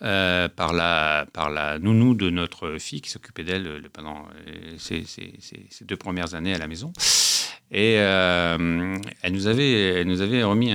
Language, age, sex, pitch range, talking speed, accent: French, 50-69, male, 85-105 Hz, 190 wpm, French